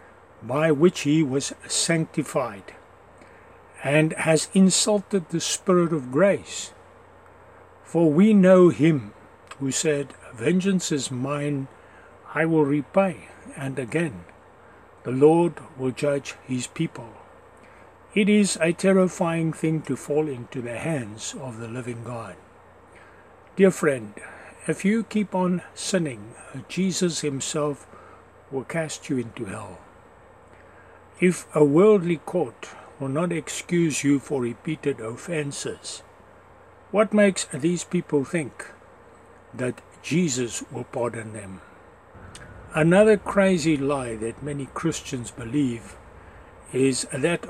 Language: English